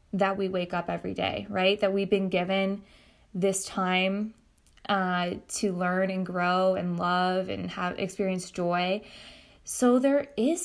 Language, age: English, 20-39